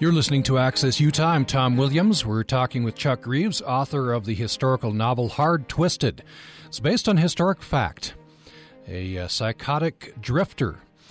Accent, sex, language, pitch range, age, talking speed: American, male, English, 95-130 Hz, 40-59, 150 wpm